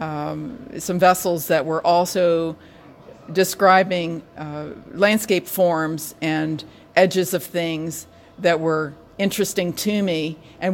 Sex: female